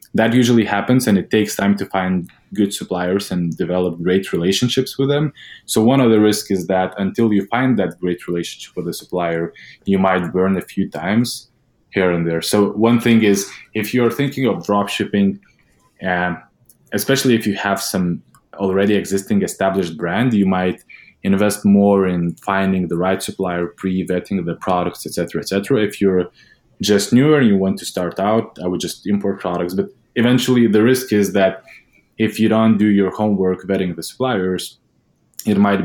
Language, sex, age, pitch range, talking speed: English, male, 20-39, 90-110 Hz, 180 wpm